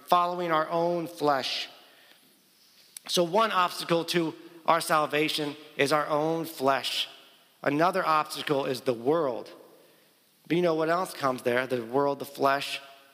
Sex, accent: male, American